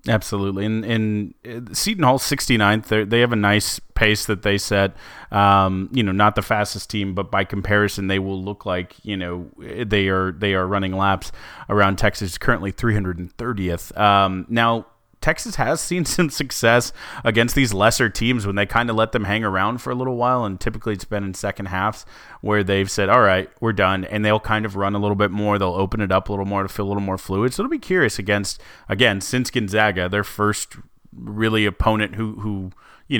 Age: 30-49